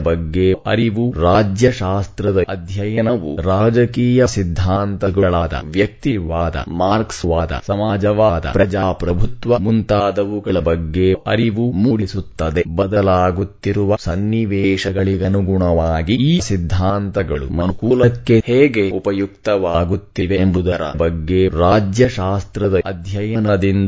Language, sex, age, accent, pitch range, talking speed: English, male, 20-39, Indian, 90-110 Hz, 70 wpm